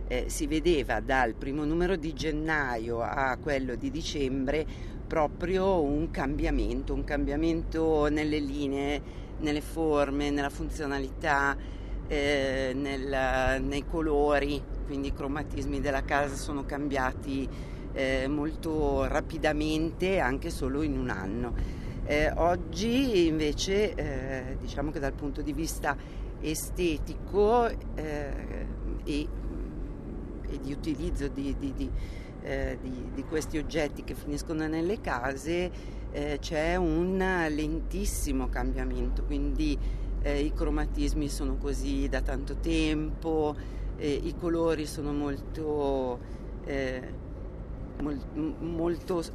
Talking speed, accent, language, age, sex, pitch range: 110 wpm, native, Italian, 50-69, female, 135-155 Hz